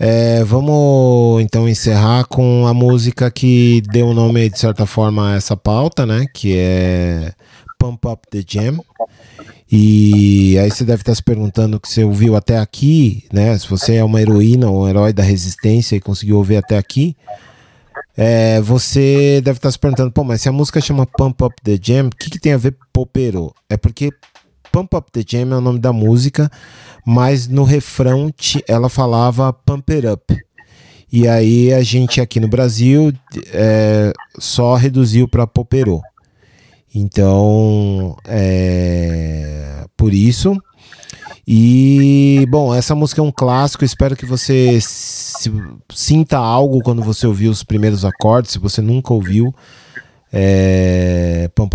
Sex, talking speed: male, 160 wpm